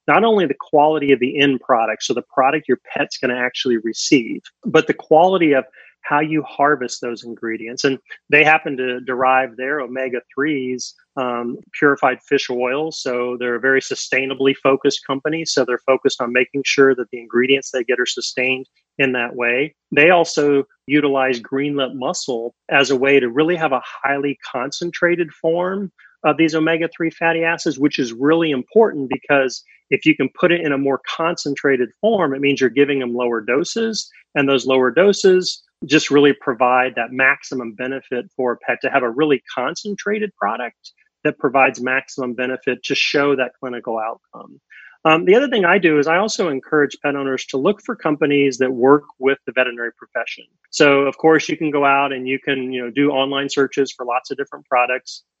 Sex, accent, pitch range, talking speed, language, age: male, American, 130-155 Hz, 185 wpm, English, 30-49